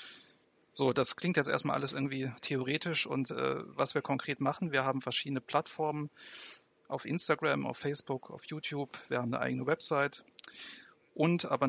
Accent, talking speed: German, 160 wpm